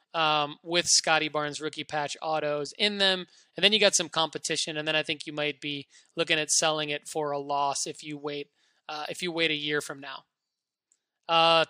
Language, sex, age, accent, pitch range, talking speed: English, male, 20-39, American, 160-200 Hz, 210 wpm